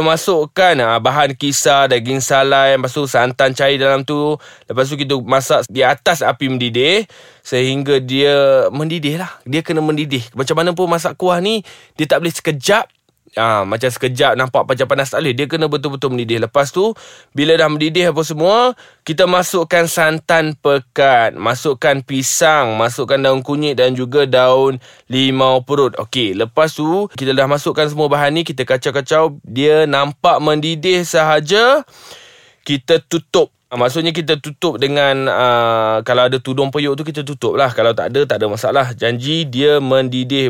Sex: male